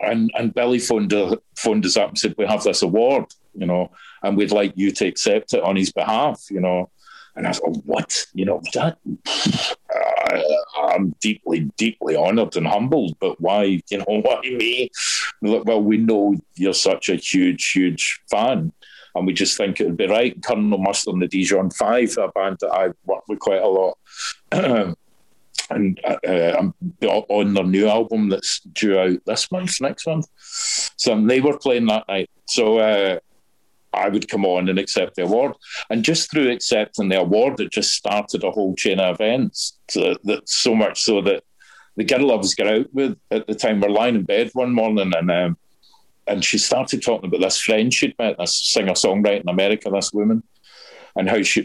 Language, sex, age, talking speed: English, male, 50-69, 195 wpm